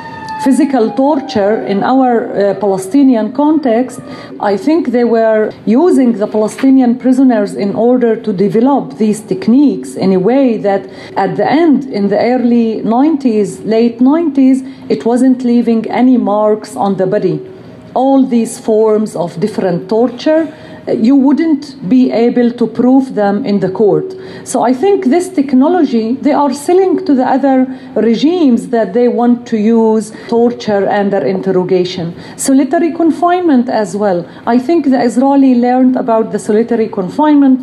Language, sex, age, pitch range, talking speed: English, female, 40-59, 210-265 Hz, 145 wpm